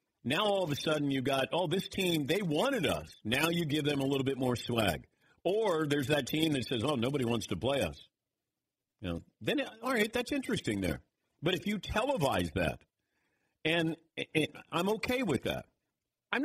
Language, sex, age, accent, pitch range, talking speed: English, male, 50-69, American, 120-165 Hz, 195 wpm